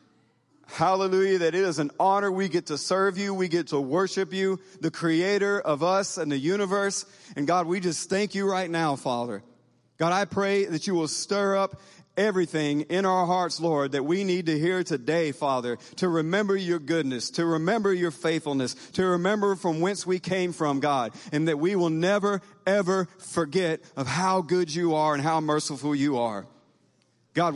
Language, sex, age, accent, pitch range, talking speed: English, male, 40-59, American, 145-180 Hz, 185 wpm